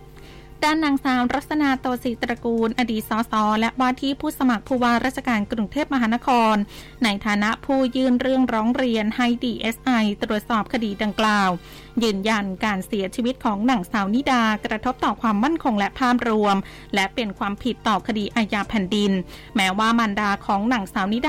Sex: female